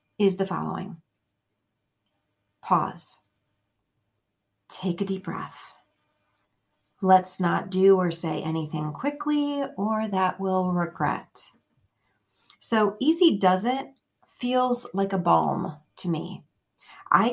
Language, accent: English, American